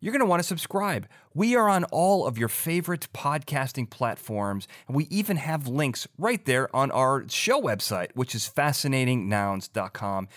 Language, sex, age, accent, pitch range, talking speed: English, male, 30-49, American, 105-145 Hz, 170 wpm